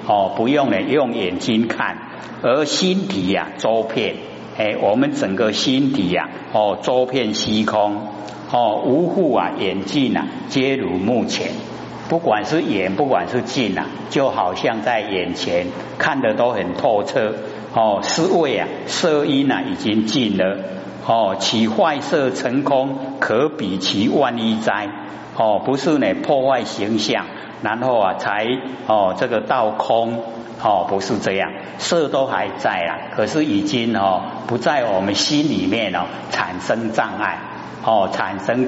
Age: 60-79